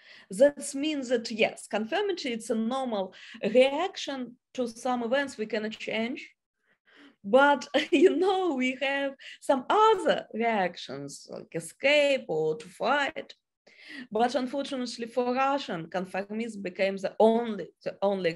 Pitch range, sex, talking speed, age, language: 210-270 Hz, female, 125 wpm, 20-39, English